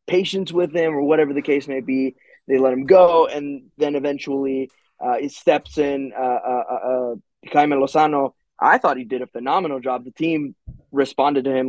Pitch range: 130-155 Hz